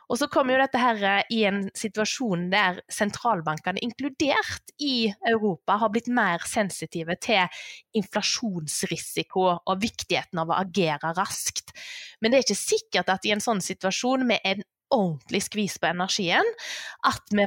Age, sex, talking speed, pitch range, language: 20-39, female, 155 wpm, 175-230 Hz, English